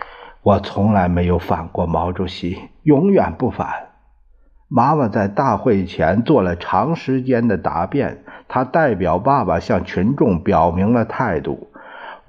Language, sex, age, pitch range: Chinese, male, 50-69, 85-120 Hz